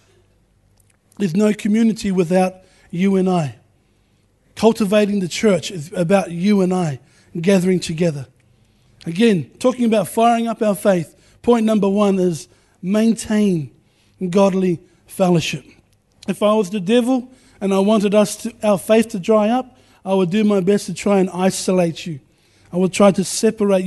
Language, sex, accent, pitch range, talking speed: English, male, Australian, 175-215 Hz, 155 wpm